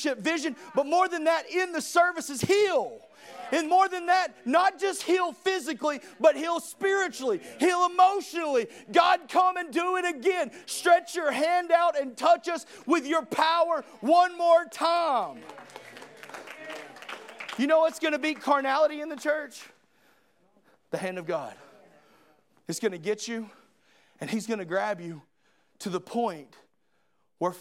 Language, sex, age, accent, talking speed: English, male, 40-59, American, 150 wpm